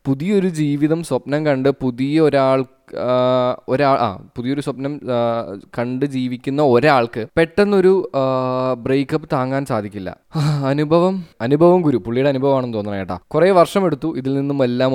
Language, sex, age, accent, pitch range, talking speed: Malayalam, male, 20-39, native, 125-160 Hz, 120 wpm